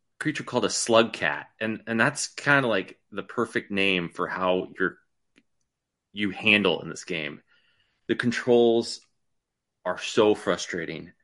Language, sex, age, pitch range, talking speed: English, male, 30-49, 100-125 Hz, 145 wpm